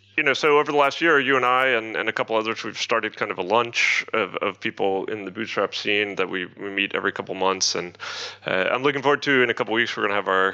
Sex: male